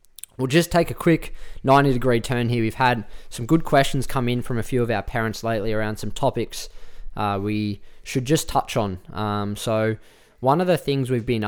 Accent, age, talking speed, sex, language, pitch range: Australian, 20-39, 205 wpm, male, English, 110-130 Hz